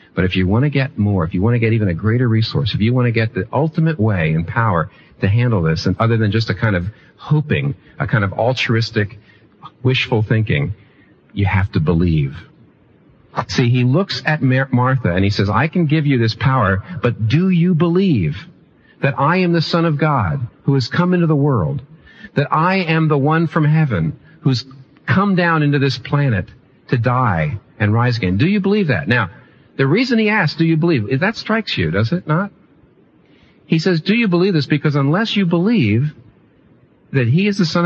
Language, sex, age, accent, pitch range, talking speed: English, male, 50-69, American, 110-155 Hz, 210 wpm